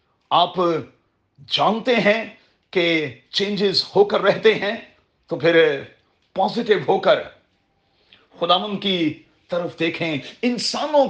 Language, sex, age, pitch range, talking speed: Urdu, male, 40-59, 140-205 Hz, 110 wpm